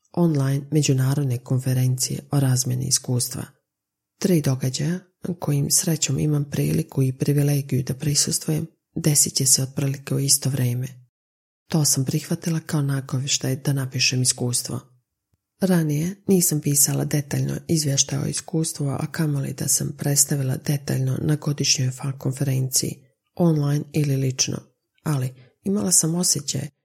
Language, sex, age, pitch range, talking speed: Croatian, female, 40-59, 135-160 Hz, 125 wpm